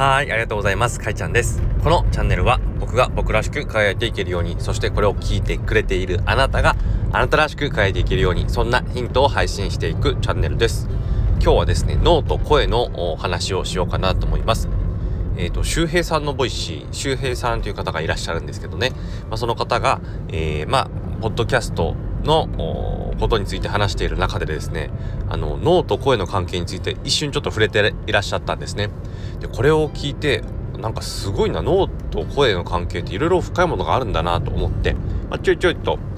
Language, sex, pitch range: Japanese, male, 90-110 Hz